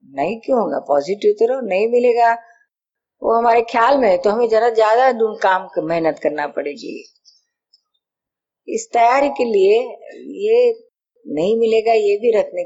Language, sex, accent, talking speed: Hindi, female, native, 140 wpm